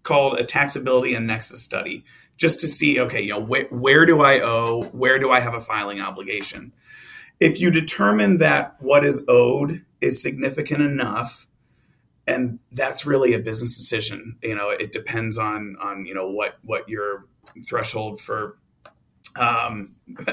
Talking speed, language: 160 wpm, English